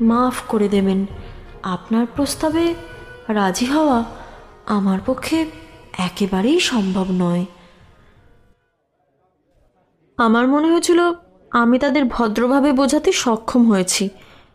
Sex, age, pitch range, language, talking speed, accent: female, 20-39, 220-305 Hz, Bengali, 85 wpm, native